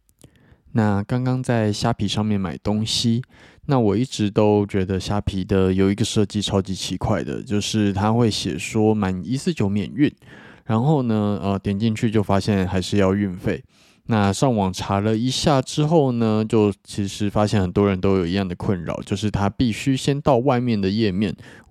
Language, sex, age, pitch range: Chinese, male, 20-39, 95-110 Hz